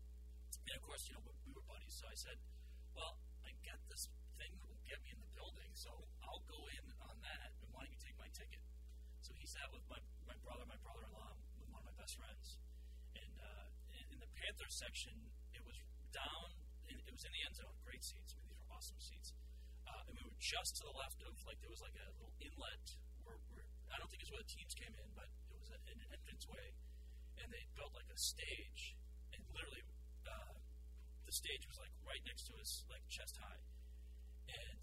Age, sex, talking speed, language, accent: 40-59, male, 220 wpm, English, American